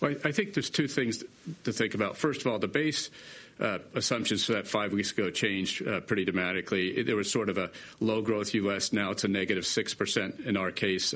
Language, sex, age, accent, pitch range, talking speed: English, male, 50-69, American, 100-120 Hz, 220 wpm